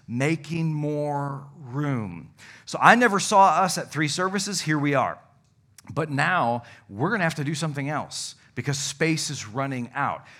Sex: male